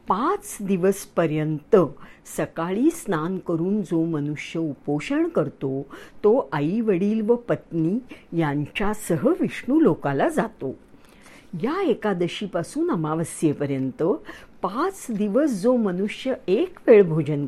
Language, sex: English, female